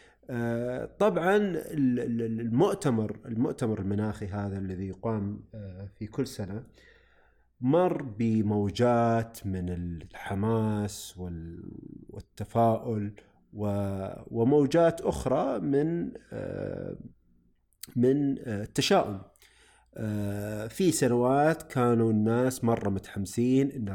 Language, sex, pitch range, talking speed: Arabic, male, 100-135 Hz, 70 wpm